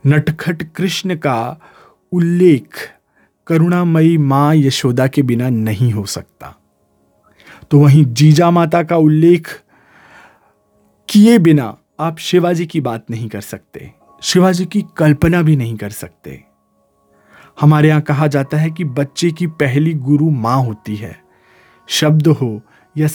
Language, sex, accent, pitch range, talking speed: Hindi, male, native, 125-165 Hz, 130 wpm